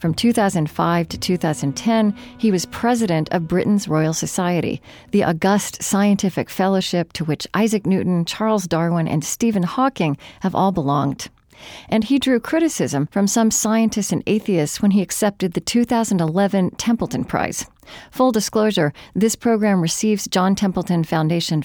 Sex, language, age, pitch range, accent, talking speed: female, English, 40-59, 165-220 Hz, American, 140 wpm